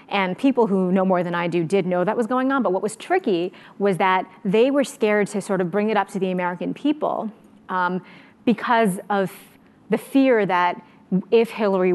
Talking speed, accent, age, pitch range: 205 wpm, American, 30-49, 185-225 Hz